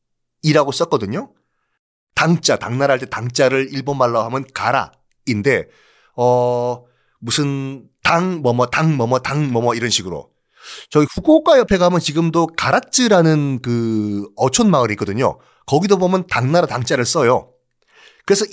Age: 30-49